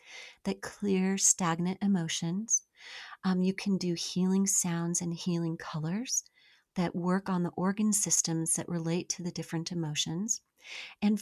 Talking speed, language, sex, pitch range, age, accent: 140 wpm, English, female, 170-200 Hz, 40-59, American